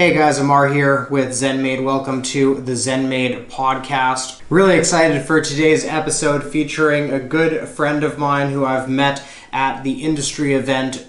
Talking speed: 155 wpm